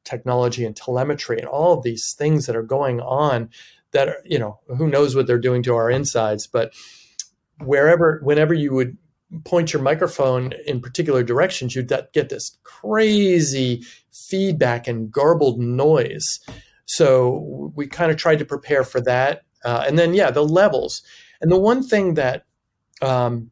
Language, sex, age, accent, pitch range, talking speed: English, male, 40-59, American, 125-155 Hz, 165 wpm